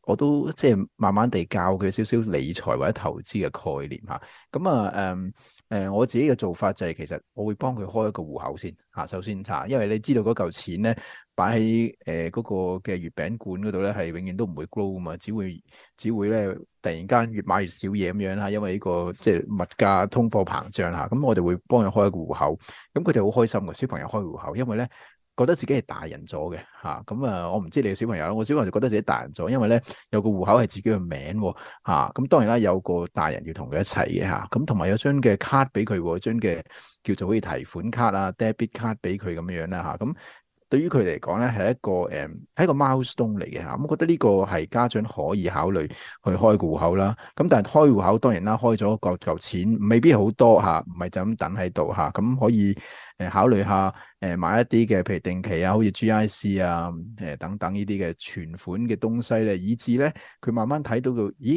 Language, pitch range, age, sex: Chinese, 95-115 Hz, 20-39, male